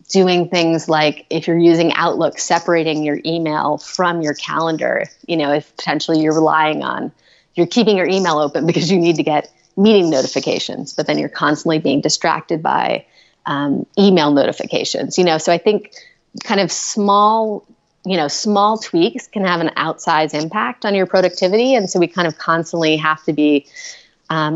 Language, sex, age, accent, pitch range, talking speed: English, female, 30-49, American, 150-185 Hz, 175 wpm